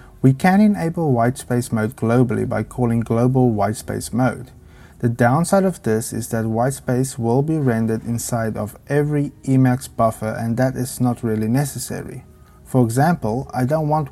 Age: 30-49